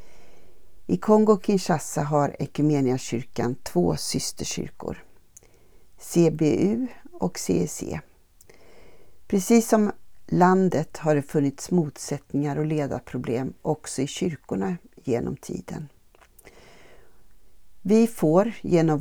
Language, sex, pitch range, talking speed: Swedish, female, 140-185 Hz, 80 wpm